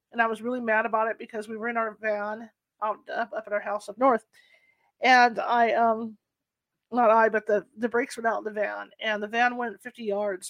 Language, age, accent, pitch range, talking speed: English, 40-59, American, 210-245 Hz, 235 wpm